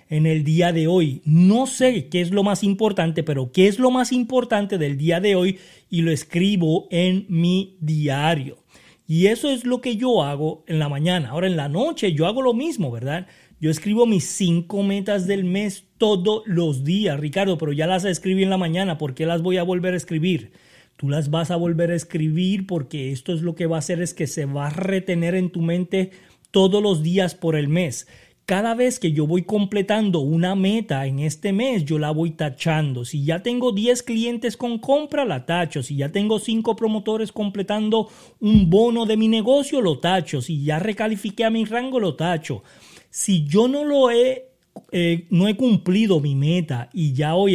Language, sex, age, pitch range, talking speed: Spanish, male, 30-49, 160-210 Hz, 205 wpm